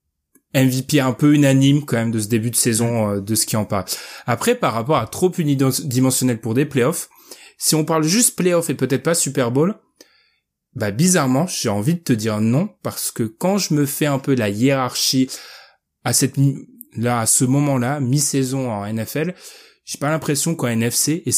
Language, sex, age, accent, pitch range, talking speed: French, male, 20-39, French, 125-160 Hz, 195 wpm